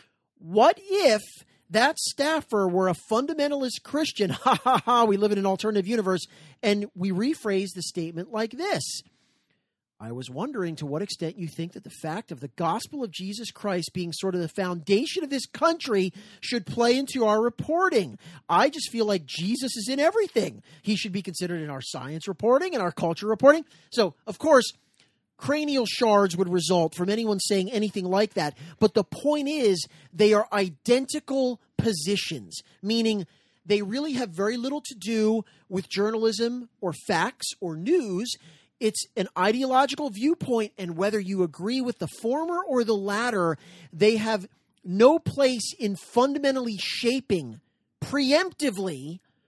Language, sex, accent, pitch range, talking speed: English, male, American, 185-250 Hz, 160 wpm